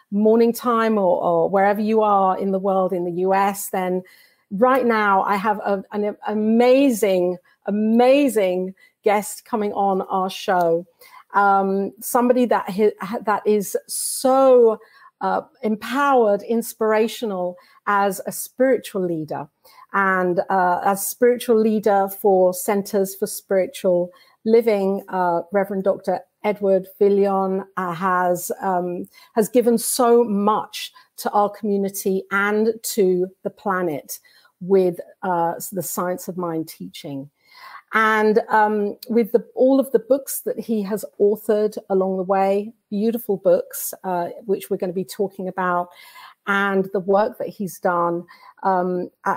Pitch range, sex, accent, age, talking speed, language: 190-225 Hz, female, British, 50-69, 125 wpm, English